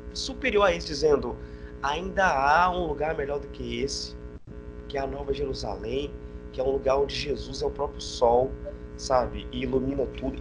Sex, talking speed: male, 180 wpm